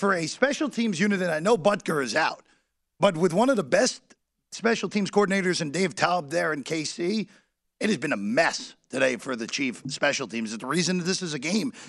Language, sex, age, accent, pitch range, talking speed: English, male, 40-59, American, 165-230 Hz, 225 wpm